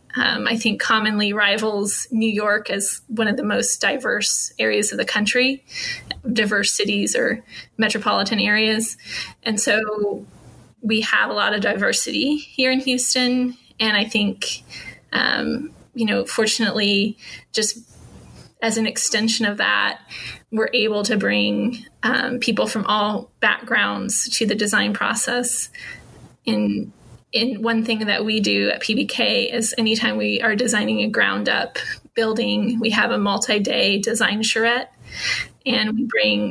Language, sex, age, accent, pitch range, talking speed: English, female, 20-39, American, 210-235 Hz, 140 wpm